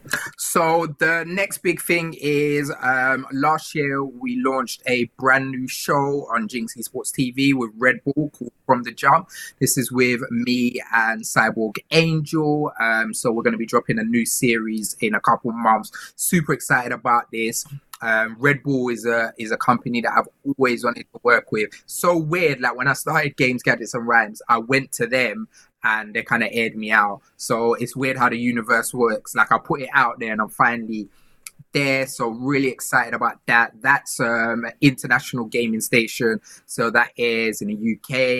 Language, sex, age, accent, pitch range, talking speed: English, male, 20-39, British, 115-140 Hz, 190 wpm